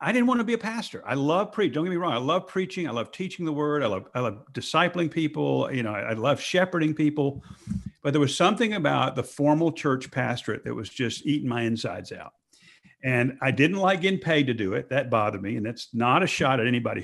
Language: English